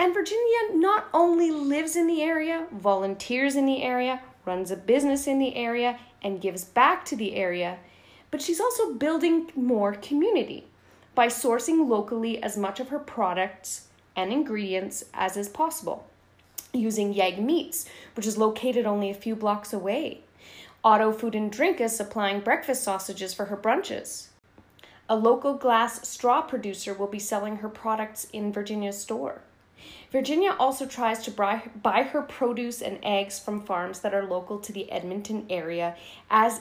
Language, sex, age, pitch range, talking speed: English, female, 30-49, 195-255 Hz, 160 wpm